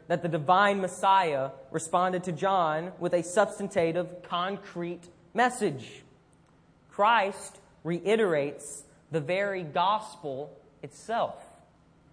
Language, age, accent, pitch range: English, 20-39, American, 160-195 Hz